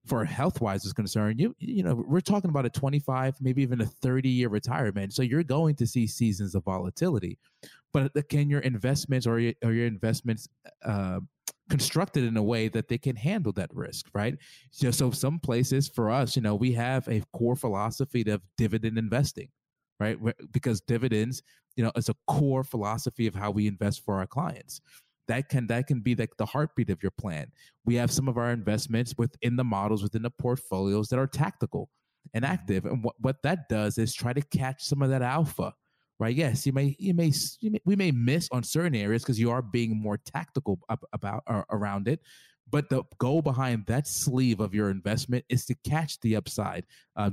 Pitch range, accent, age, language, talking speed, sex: 110-140 Hz, American, 20-39, English, 200 wpm, male